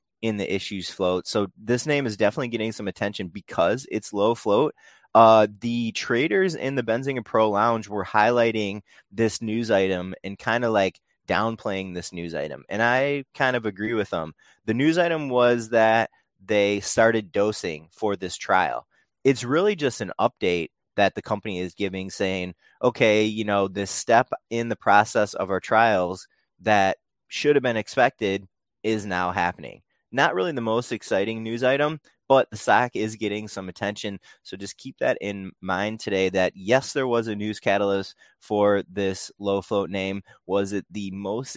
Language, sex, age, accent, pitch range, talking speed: English, male, 20-39, American, 95-120 Hz, 180 wpm